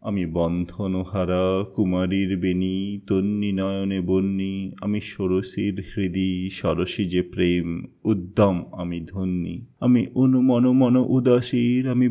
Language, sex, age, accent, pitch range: Bengali, male, 30-49, native, 95-115 Hz